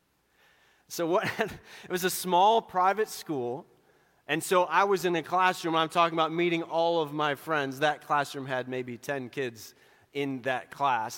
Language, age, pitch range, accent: English, 30-49, 145-175 Hz, American